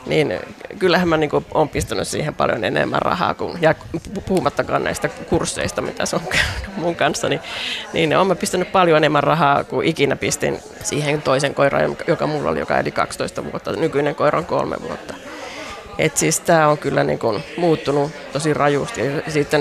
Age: 30-49